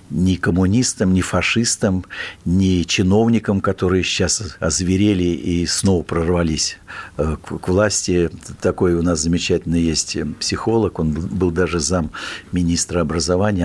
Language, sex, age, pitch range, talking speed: Russian, male, 60-79, 85-105 Hz, 115 wpm